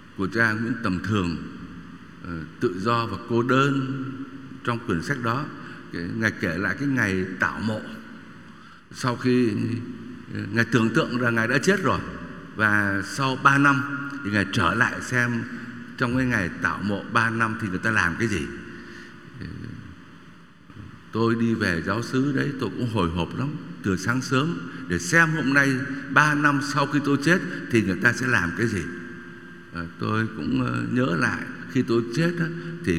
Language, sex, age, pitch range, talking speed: Vietnamese, male, 60-79, 100-140 Hz, 170 wpm